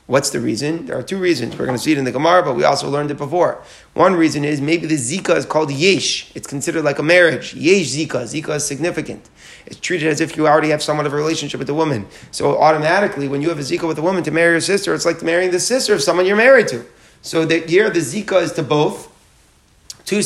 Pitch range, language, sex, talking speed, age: 145-170 Hz, English, male, 255 wpm, 30-49